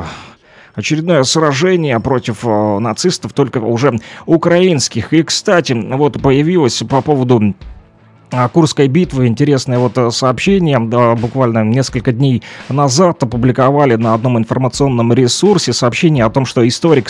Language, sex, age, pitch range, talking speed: Russian, male, 30-49, 120-145 Hz, 115 wpm